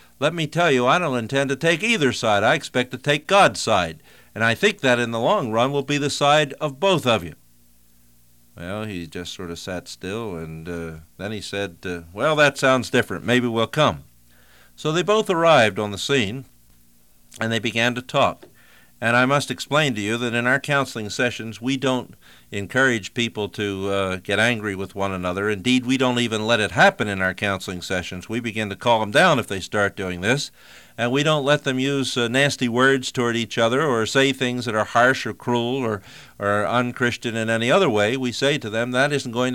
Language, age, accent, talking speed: English, 60-79, American, 215 wpm